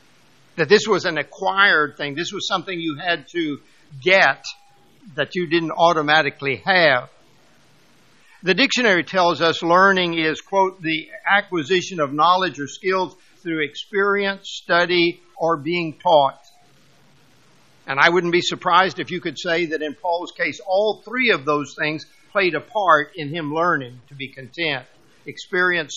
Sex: male